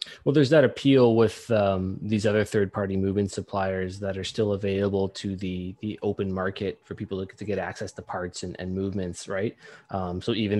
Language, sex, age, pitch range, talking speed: English, male, 20-39, 95-105 Hz, 195 wpm